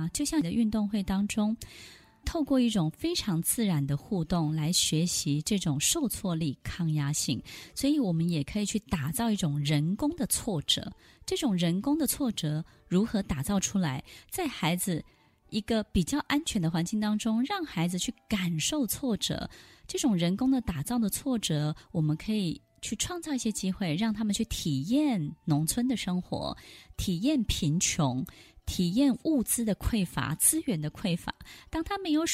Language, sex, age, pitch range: Chinese, female, 20-39, 165-250 Hz